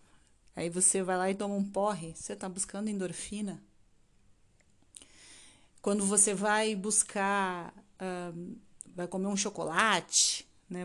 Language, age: Portuguese, 30-49